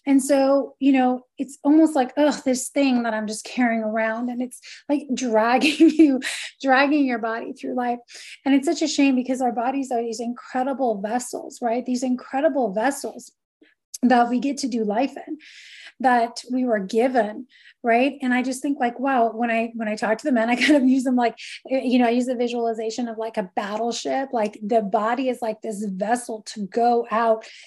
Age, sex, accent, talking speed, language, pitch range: 30-49, female, American, 200 wpm, English, 230-275 Hz